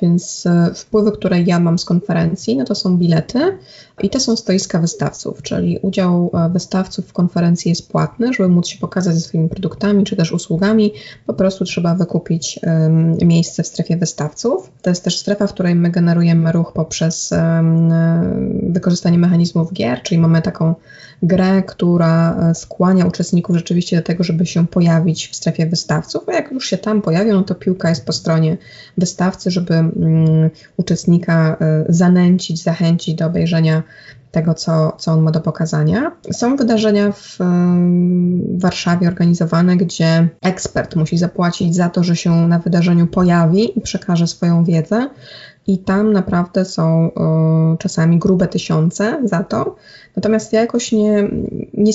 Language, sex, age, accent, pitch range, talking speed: Polish, female, 20-39, native, 165-200 Hz, 150 wpm